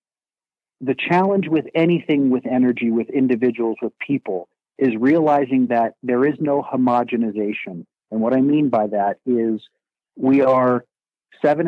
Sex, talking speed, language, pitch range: male, 140 wpm, English, 115-145 Hz